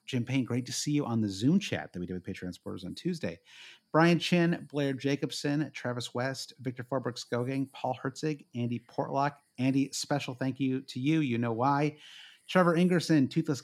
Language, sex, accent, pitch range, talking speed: English, male, American, 115-150 Hz, 190 wpm